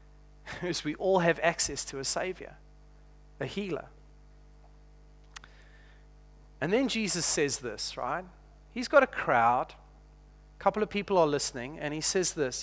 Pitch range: 150-205 Hz